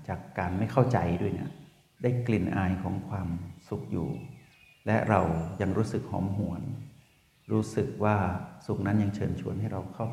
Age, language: 60-79, Thai